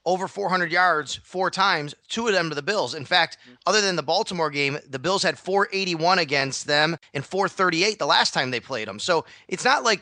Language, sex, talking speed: English, male, 215 wpm